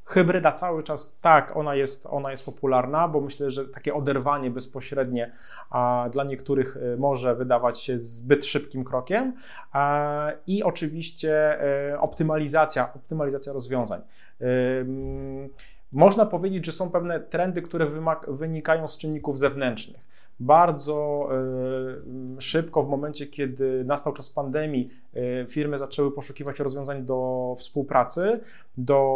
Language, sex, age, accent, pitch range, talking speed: Polish, male, 30-49, native, 140-180 Hz, 120 wpm